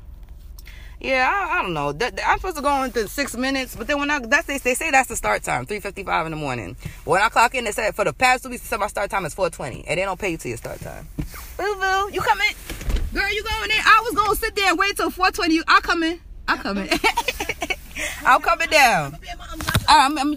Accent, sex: American, female